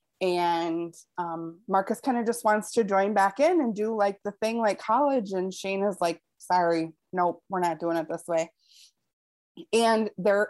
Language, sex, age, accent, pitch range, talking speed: English, female, 20-39, American, 180-230 Hz, 185 wpm